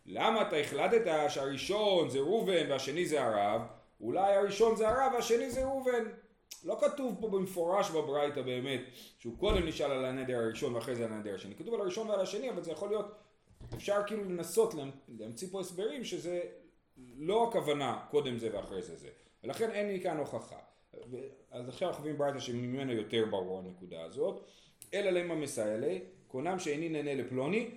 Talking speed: 170 wpm